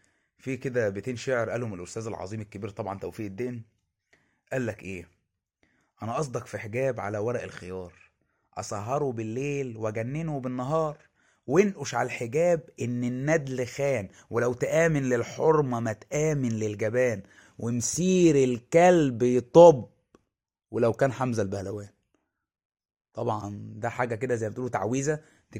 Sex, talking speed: male, 115 wpm